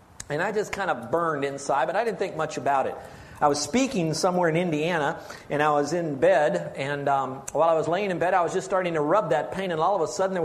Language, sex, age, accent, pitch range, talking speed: English, male, 50-69, American, 150-210 Hz, 270 wpm